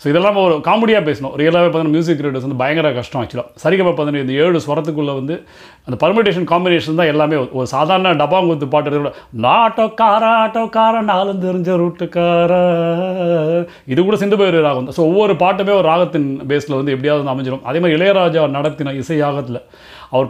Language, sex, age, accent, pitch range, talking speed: Tamil, male, 30-49, native, 145-185 Hz, 150 wpm